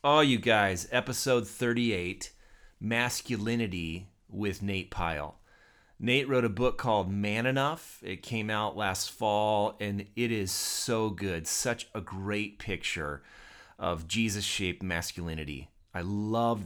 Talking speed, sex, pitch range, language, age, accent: 125 wpm, male, 90-110 Hz, English, 30-49, American